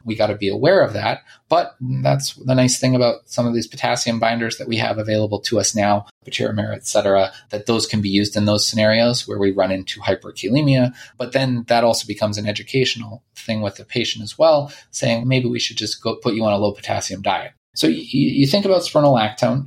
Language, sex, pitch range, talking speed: English, male, 105-125 Hz, 225 wpm